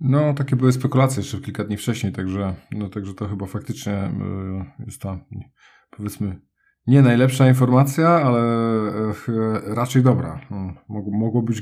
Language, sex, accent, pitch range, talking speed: Polish, male, native, 100-115 Hz, 135 wpm